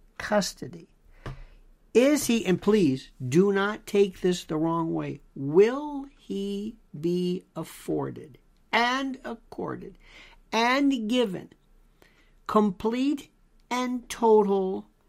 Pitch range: 155-215 Hz